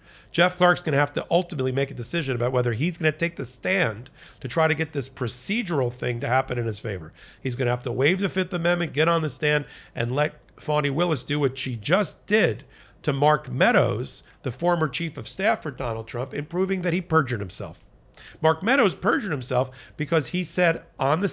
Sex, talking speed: male, 220 wpm